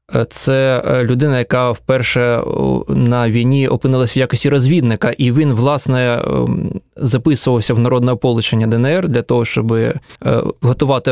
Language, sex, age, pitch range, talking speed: Russian, male, 20-39, 115-135 Hz, 120 wpm